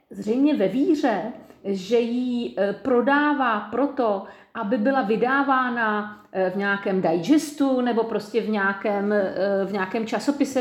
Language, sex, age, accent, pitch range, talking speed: Czech, female, 50-69, native, 195-260 Hz, 115 wpm